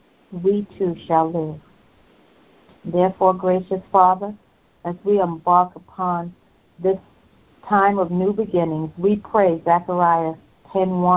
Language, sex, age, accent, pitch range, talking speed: English, female, 50-69, American, 175-205 Hz, 100 wpm